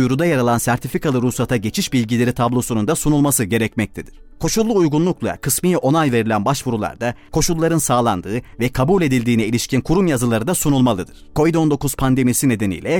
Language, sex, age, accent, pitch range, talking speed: Turkish, male, 30-49, native, 115-140 Hz, 140 wpm